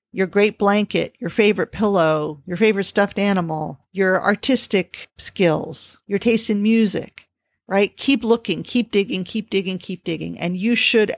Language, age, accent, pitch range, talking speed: English, 50-69, American, 170-210 Hz, 155 wpm